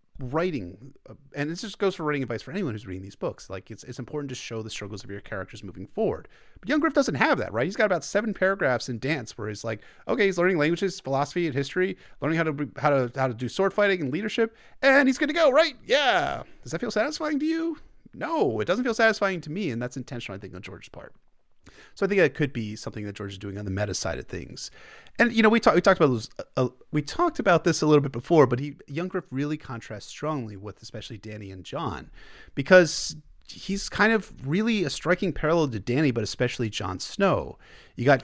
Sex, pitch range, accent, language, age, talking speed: male, 120-180 Hz, American, English, 30-49, 240 wpm